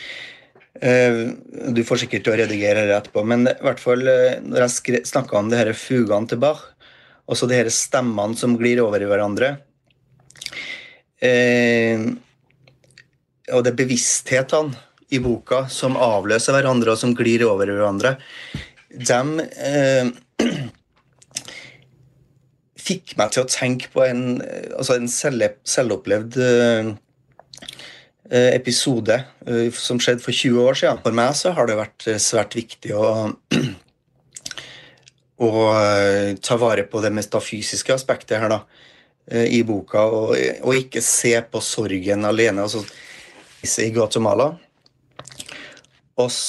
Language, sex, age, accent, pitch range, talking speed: Danish, male, 30-49, Swedish, 110-130 Hz, 115 wpm